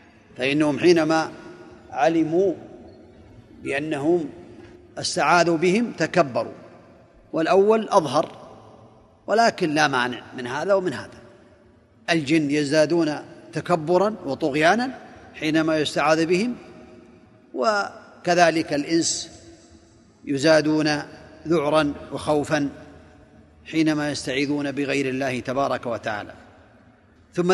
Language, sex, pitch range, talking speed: Arabic, male, 135-170 Hz, 75 wpm